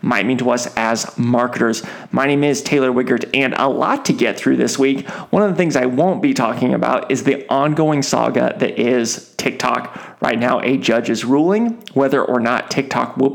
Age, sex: 30-49, male